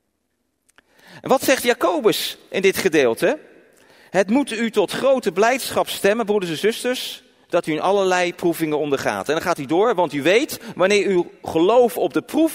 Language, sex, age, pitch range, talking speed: Dutch, male, 40-59, 180-260 Hz, 175 wpm